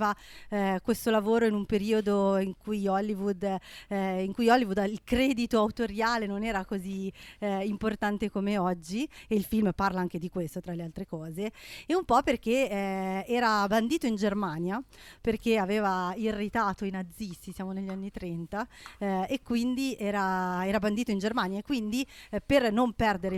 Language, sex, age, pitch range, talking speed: Italian, female, 30-49, 185-220 Hz, 170 wpm